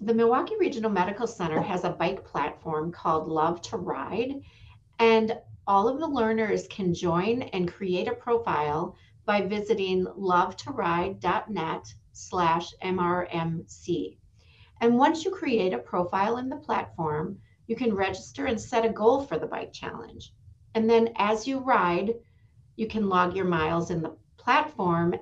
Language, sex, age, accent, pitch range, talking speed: English, female, 40-59, American, 165-220 Hz, 150 wpm